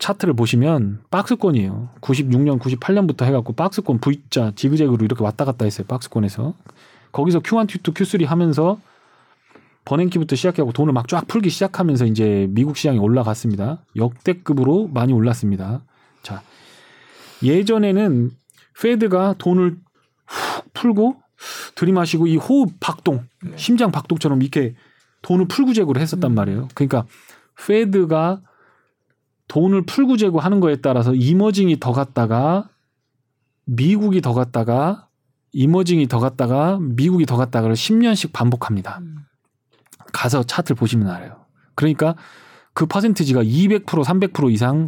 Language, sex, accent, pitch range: Korean, male, native, 125-185 Hz